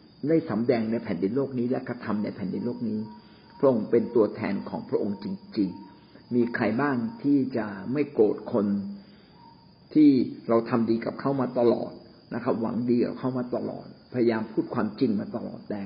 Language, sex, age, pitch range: Thai, male, 60-79, 115-140 Hz